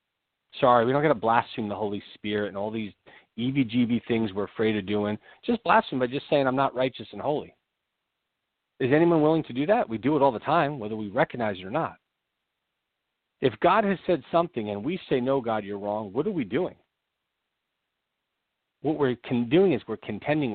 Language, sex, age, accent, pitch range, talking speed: English, male, 40-59, American, 105-130 Hz, 200 wpm